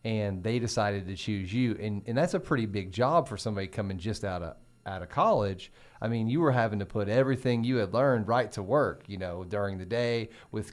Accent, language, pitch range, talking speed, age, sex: American, English, 100-125 Hz, 235 wpm, 40-59, male